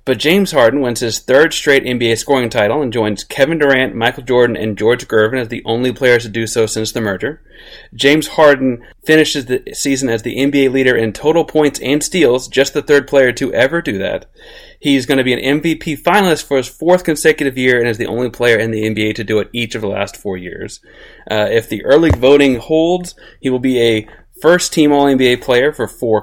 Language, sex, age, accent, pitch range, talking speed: English, male, 30-49, American, 110-140 Hz, 215 wpm